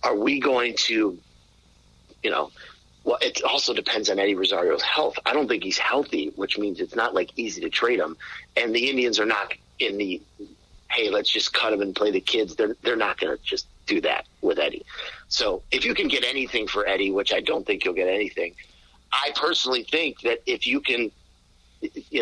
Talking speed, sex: 210 wpm, male